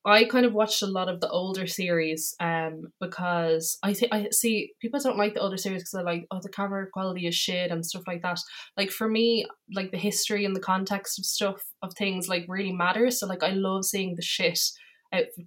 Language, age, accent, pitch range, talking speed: English, 20-39, Irish, 170-200 Hz, 230 wpm